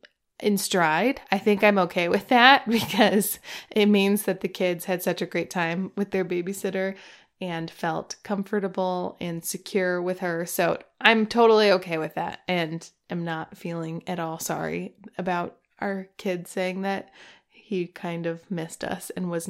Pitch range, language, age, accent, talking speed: 175-205 Hz, English, 20-39, American, 165 wpm